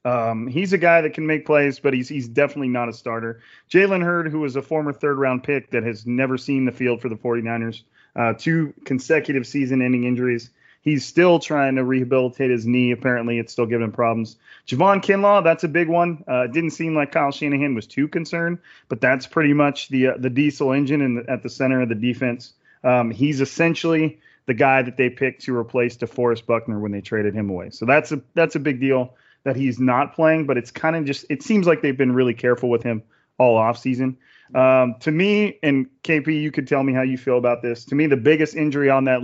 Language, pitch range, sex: English, 125-150 Hz, male